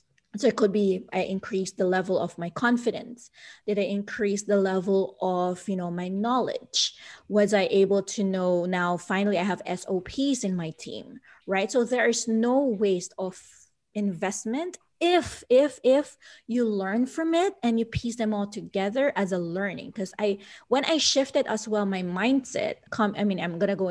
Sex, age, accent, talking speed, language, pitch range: female, 20-39, Filipino, 185 wpm, English, 185-230 Hz